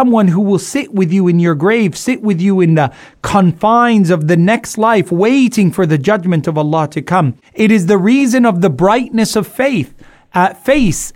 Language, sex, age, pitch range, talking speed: English, male, 30-49, 175-230 Hz, 200 wpm